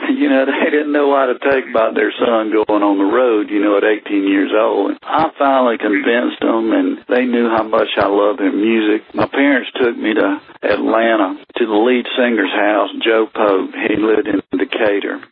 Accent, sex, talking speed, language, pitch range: American, male, 200 wpm, English, 105-150 Hz